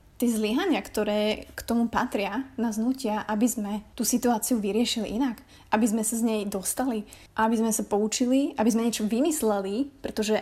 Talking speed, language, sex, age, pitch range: 165 wpm, Slovak, female, 20-39, 215-255 Hz